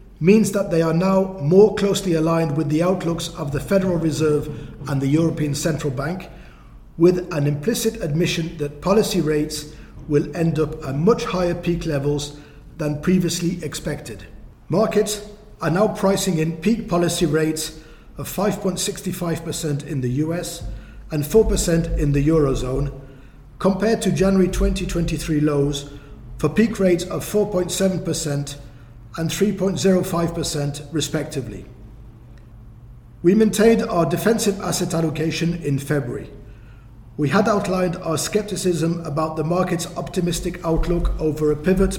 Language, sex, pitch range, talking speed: English, male, 145-185 Hz, 130 wpm